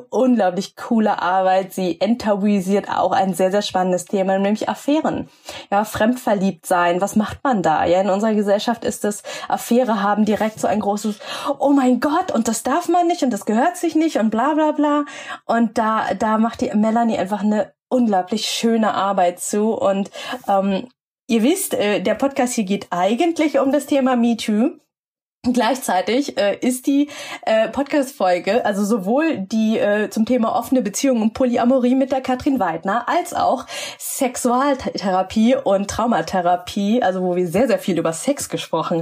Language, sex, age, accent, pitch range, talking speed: German, female, 20-39, German, 190-260 Hz, 165 wpm